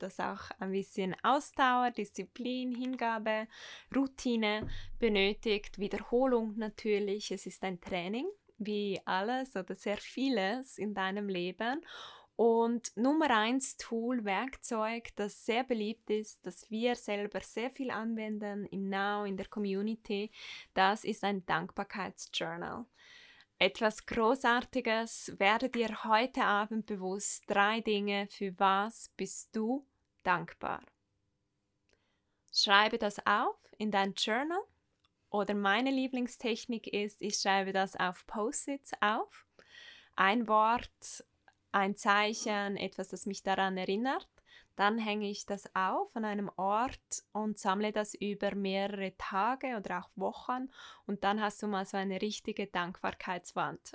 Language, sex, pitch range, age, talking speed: German, female, 195-235 Hz, 10-29, 125 wpm